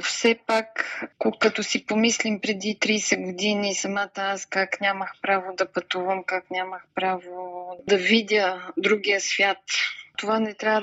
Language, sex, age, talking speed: Bulgarian, female, 20-39, 140 wpm